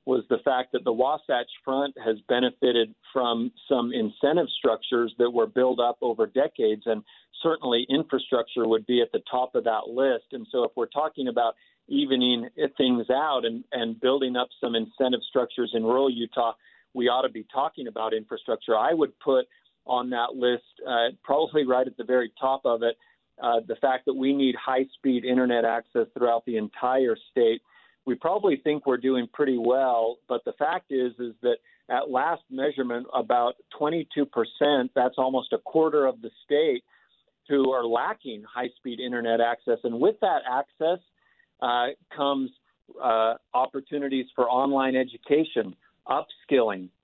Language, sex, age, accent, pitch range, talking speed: English, male, 50-69, American, 120-140 Hz, 165 wpm